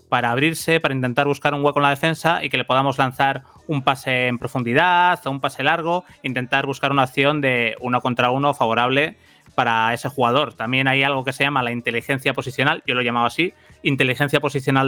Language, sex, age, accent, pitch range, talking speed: Spanish, male, 30-49, Spanish, 130-150 Hz, 200 wpm